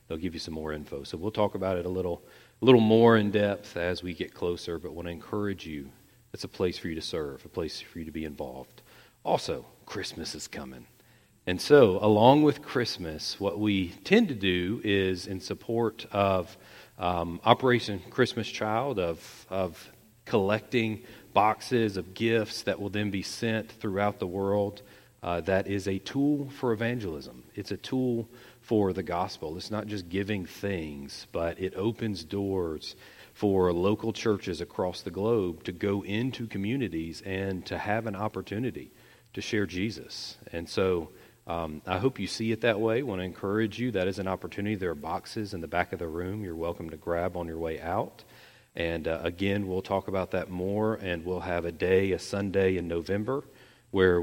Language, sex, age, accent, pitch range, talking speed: English, male, 40-59, American, 90-110 Hz, 190 wpm